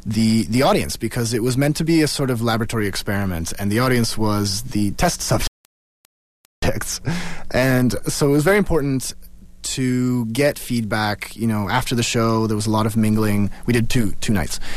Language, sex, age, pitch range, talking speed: English, male, 30-49, 105-145 Hz, 185 wpm